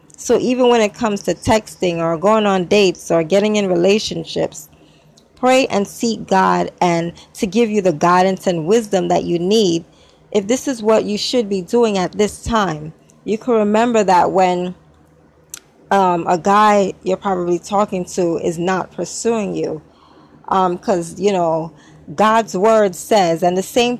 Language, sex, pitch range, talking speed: English, female, 175-215 Hz, 170 wpm